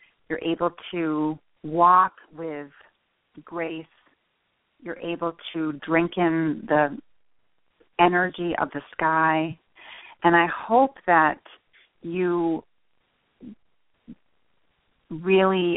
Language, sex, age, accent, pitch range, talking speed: English, female, 40-59, American, 145-170 Hz, 85 wpm